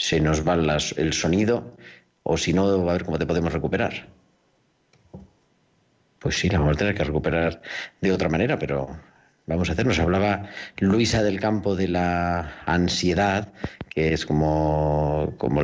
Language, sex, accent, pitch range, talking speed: Spanish, male, Spanish, 80-95 Hz, 160 wpm